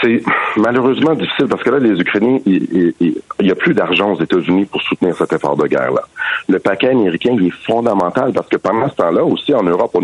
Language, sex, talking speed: French, male, 215 wpm